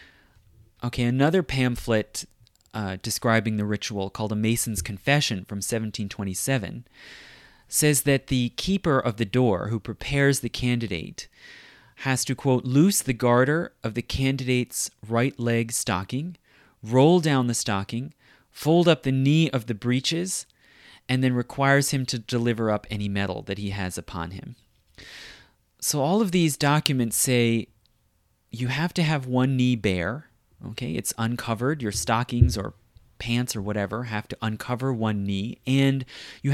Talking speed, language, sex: 150 wpm, English, male